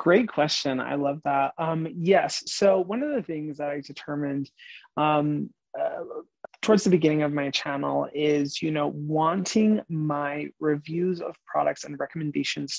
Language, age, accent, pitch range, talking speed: English, 20-39, American, 145-170 Hz, 155 wpm